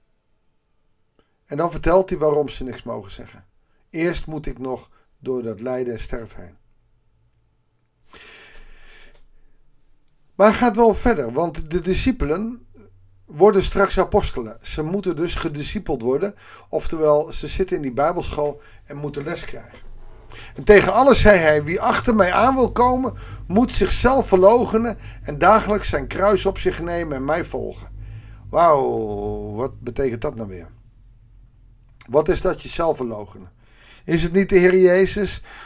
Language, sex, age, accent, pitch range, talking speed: Dutch, male, 50-69, Dutch, 115-180 Hz, 145 wpm